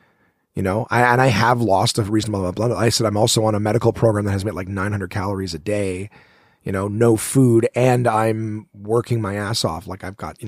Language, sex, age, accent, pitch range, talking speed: English, male, 30-49, American, 105-130 Hz, 240 wpm